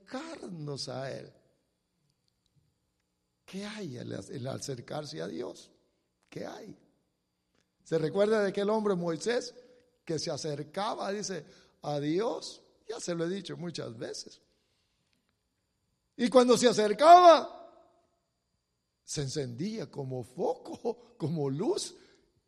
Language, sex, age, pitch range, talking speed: English, male, 60-79, 155-235 Hz, 110 wpm